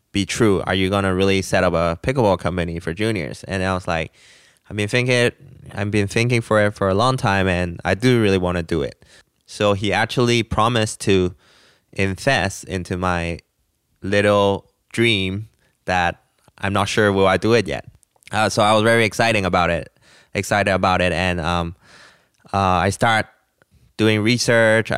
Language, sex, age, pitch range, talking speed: English, male, 20-39, 90-110 Hz, 180 wpm